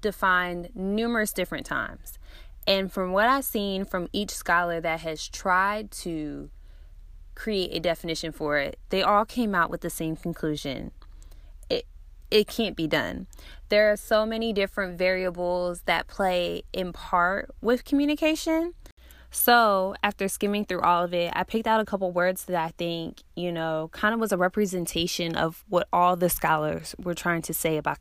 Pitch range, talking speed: 165-210 Hz, 170 wpm